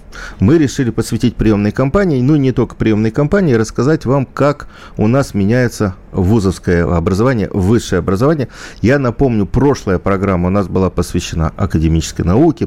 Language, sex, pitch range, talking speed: Russian, male, 90-130 Hz, 140 wpm